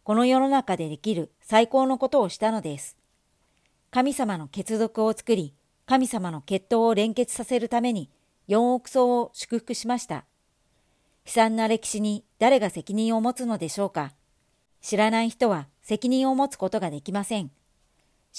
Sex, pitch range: male, 180-240 Hz